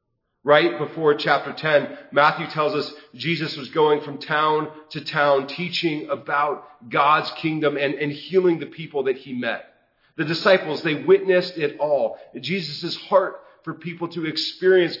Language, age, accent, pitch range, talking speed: English, 40-59, American, 150-185 Hz, 150 wpm